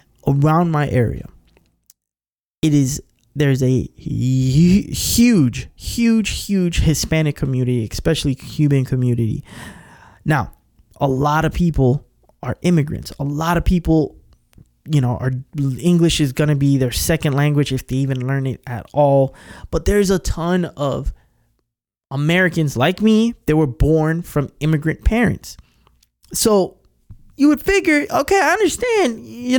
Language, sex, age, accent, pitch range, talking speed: English, male, 20-39, American, 135-215 Hz, 135 wpm